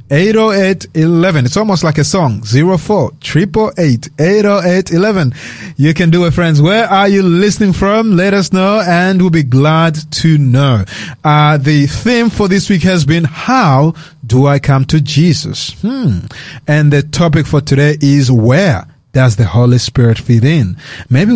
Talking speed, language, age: 155 wpm, English, 30-49